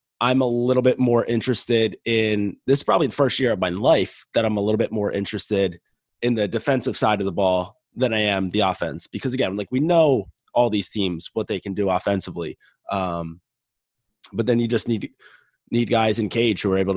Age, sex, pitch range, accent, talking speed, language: 20-39, male, 100-125 Hz, American, 215 wpm, English